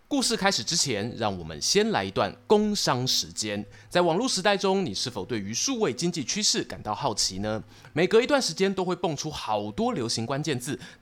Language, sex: Chinese, male